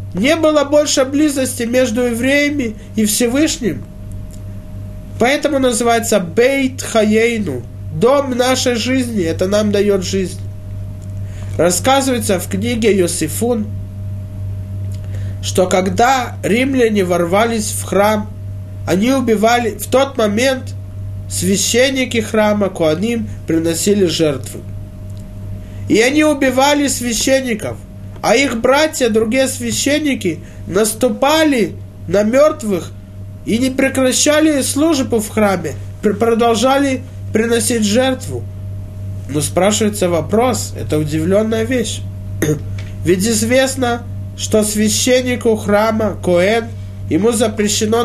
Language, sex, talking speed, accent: Russian, male, 90 wpm, native